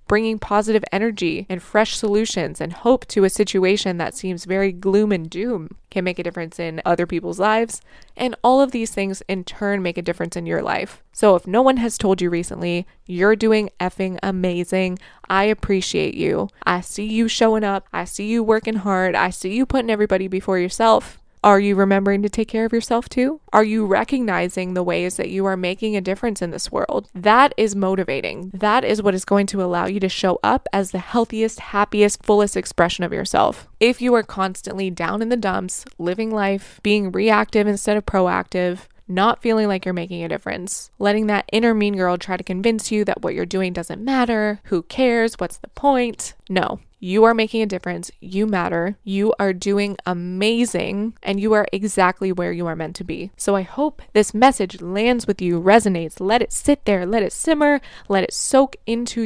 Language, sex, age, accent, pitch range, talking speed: English, female, 20-39, American, 185-220 Hz, 200 wpm